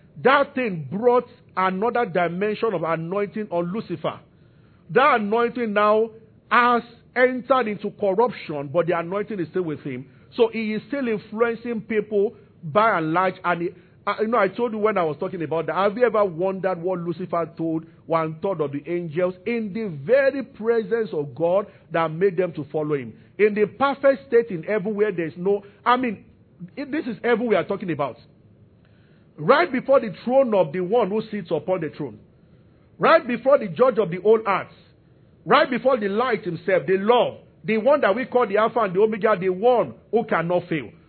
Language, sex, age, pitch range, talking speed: English, male, 50-69, 170-230 Hz, 190 wpm